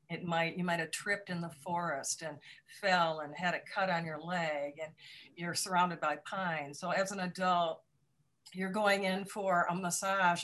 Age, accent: 50-69, American